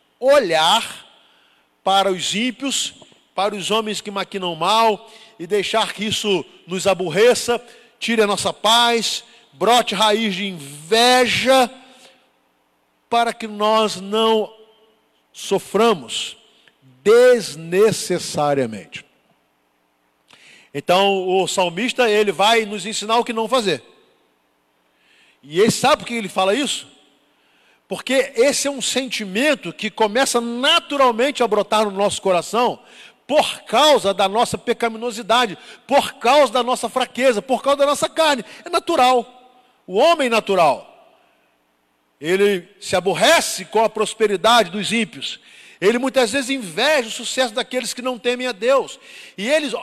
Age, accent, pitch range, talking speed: 50-69, Brazilian, 195-250 Hz, 125 wpm